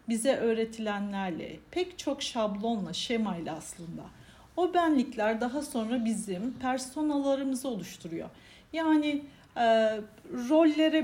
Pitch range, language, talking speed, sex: 220-290 Hz, Turkish, 85 wpm, female